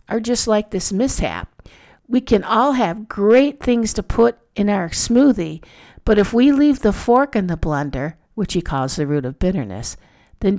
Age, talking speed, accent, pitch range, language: 50-69, 185 wpm, American, 175-225 Hz, English